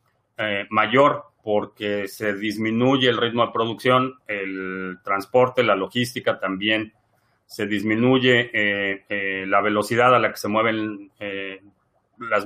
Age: 40-59